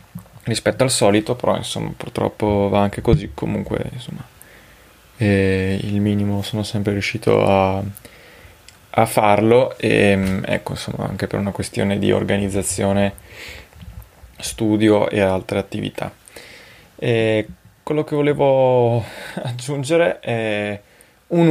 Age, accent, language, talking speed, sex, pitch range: 20-39, native, Italian, 110 wpm, male, 100-120 Hz